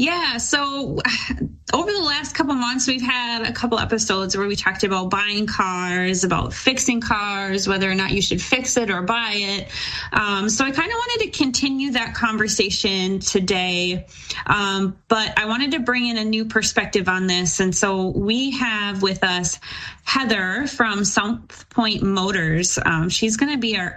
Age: 20-39